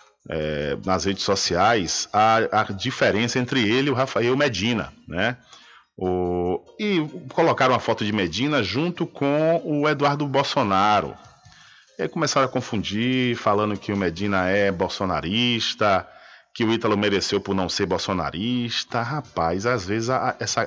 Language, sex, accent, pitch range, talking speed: Portuguese, male, Brazilian, 95-125 Hz, 145 wpm